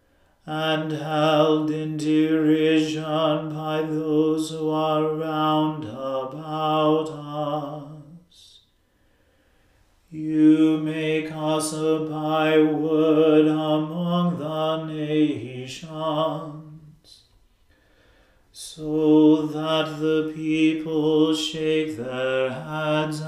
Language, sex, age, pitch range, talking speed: English, male, 40-59, 150-155 Hz, 65 wpm